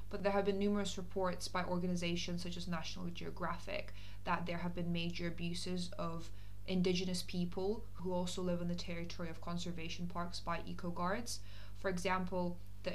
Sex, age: female, 20-39